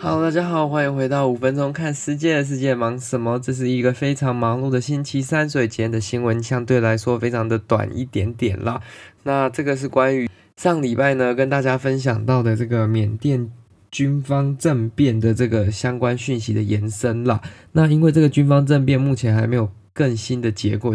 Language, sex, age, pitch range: Chinese, male, 20-39, 105-130 Hz